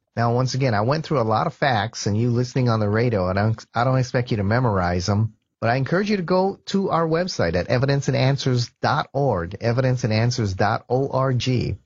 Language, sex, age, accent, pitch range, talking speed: English, male, 30-49, American, 110-145 Hz, 180 wpm